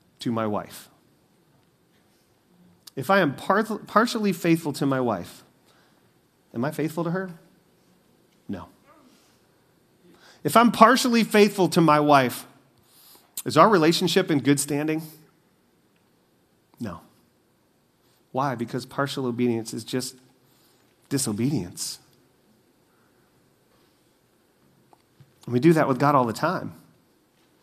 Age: 40-59